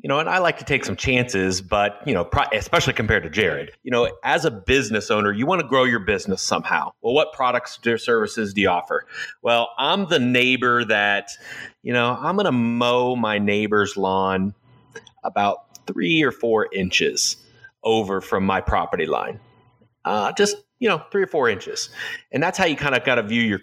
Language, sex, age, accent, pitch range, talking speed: English, male, 30-49, American, 115-160 Hz, 200 wpm